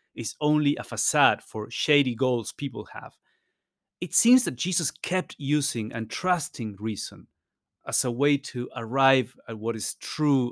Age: 30-49